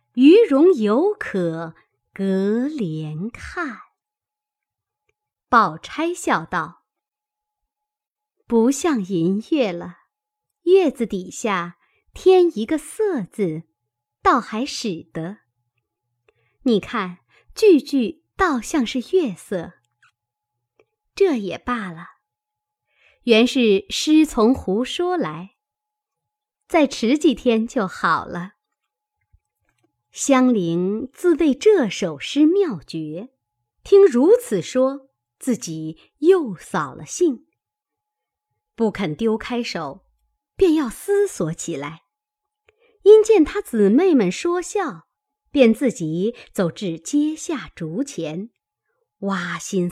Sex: male